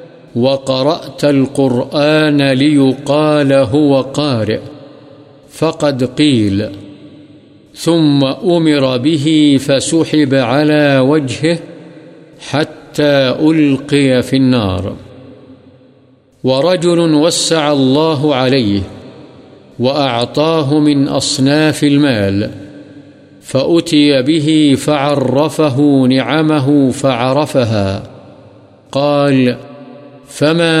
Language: Urdu